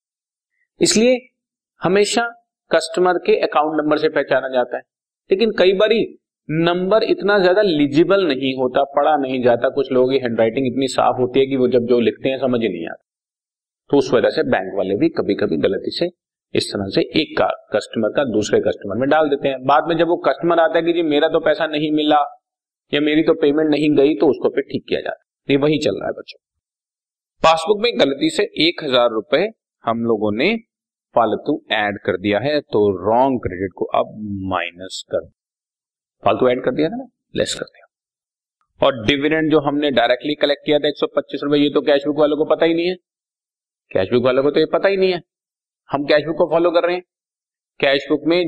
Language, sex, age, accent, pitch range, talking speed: Hindi, male, 40-59, native, 140-185 Hz, 190 wpm